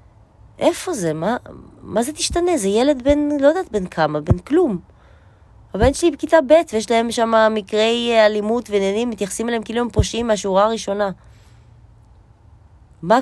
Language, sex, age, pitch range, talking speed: Hebrew, female, 20-39, 175-265 Hz, 145 wpm